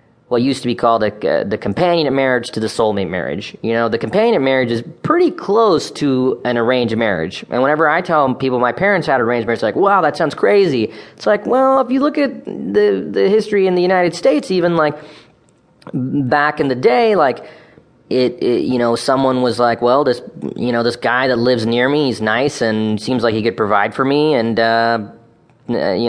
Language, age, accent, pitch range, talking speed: English, 20-39, American, 115-150 Hz, 210 wpm